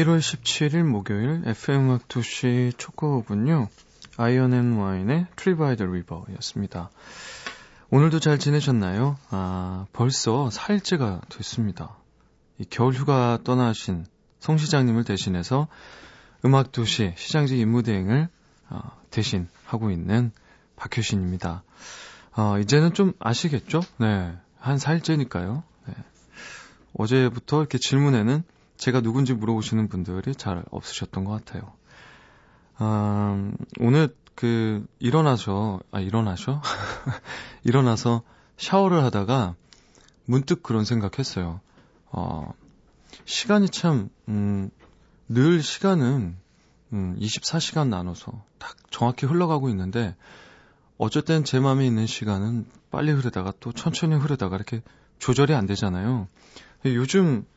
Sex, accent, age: male, native, 20-39